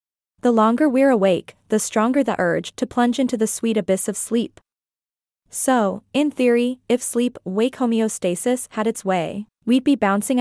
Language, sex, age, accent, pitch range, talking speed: English, female, 20-39, American, 200-255 Hz, 160 wpm